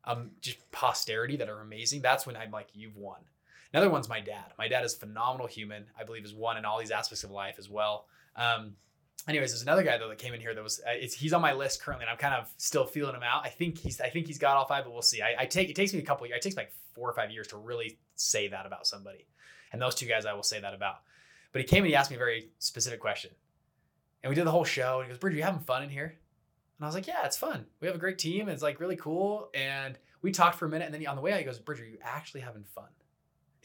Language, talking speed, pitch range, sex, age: English, 305 wpm, 115-155 Hz, male, 20-39